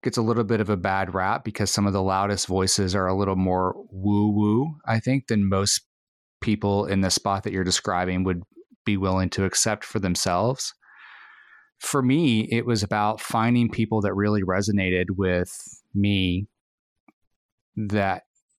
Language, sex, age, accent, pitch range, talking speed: English, male, 30-49, American, 95-110 Hz, 160 wpm